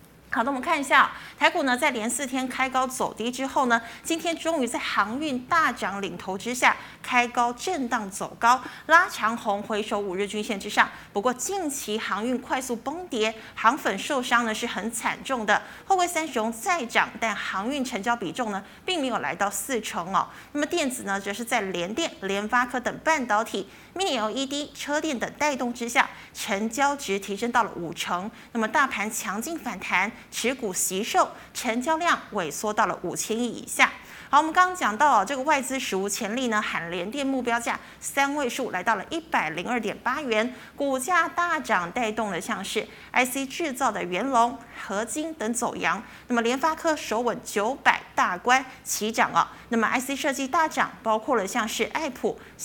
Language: Chinese